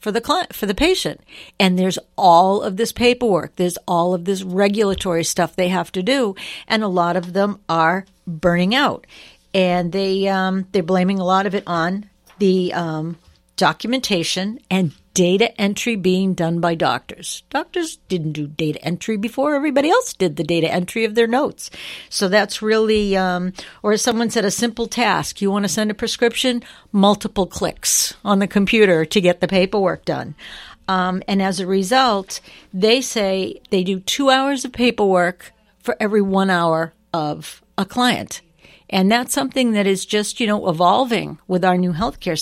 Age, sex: 60-79, female